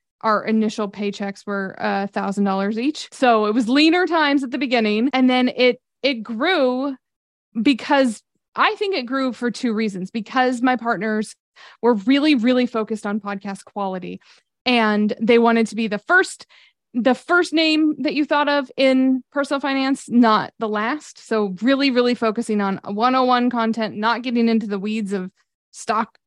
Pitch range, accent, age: 210-260 Hz, American, 20-39